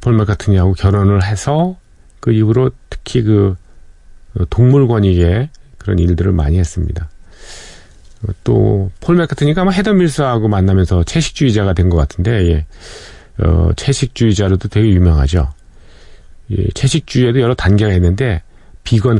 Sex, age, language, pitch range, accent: male, 40-59, Korean, 85-120 Hz, native